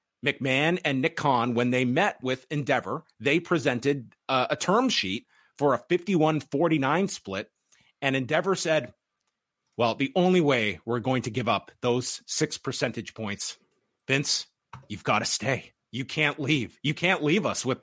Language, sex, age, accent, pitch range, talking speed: English, male, 30-49, American, 120-150 Hz, 165 wpm